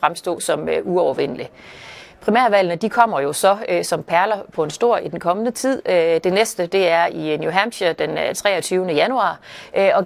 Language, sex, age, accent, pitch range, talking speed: Danish, female, 30-49, native, 170-220 Hz, 190 wpm